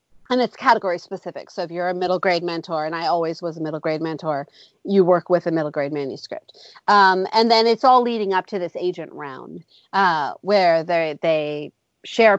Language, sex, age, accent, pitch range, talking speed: English, female, 40-59, American, 170-210 Hz, 205 wpm